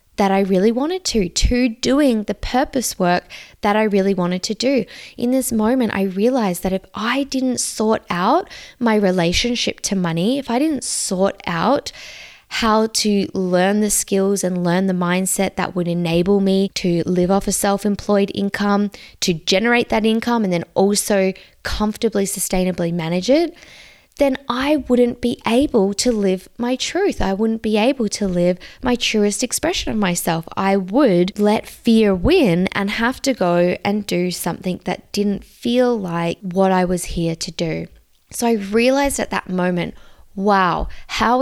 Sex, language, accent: female, English, Australian